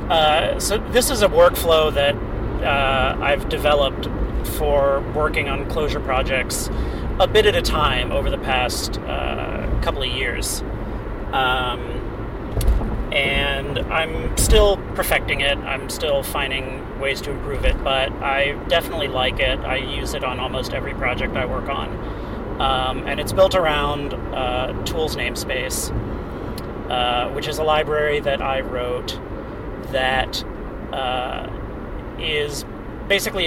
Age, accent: 30-49, American